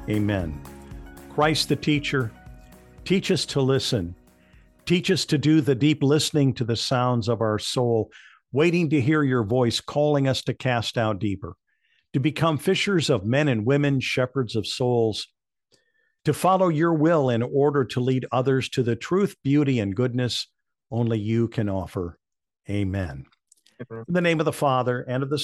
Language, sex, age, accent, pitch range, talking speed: English, male, 50-69, American, 120-155 Hz, 165 wpm